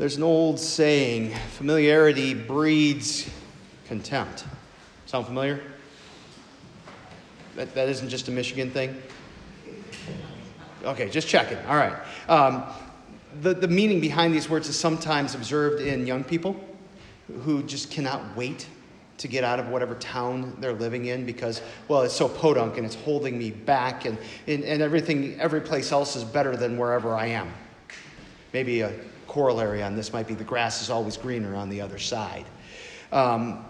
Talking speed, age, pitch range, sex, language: 155 wpm, 40-59, 120-160 Hz, male, English